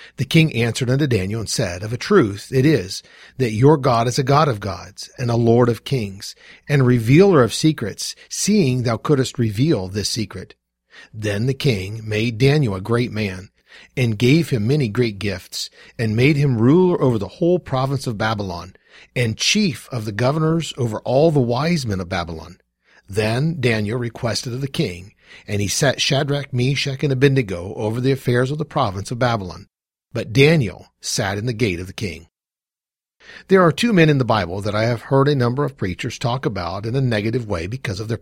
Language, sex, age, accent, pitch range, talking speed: English, male, 40-59, American, 100-140 Hz, 200 wpm